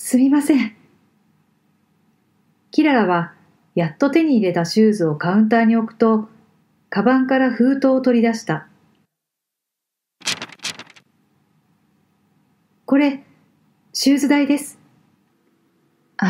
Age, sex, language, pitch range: 40-59, female, Japanese, 180-255 Hz